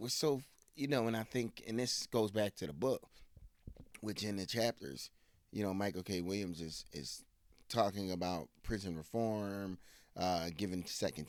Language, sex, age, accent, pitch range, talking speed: English, male, 30-49, American, 90-115 Hz, 170 wpm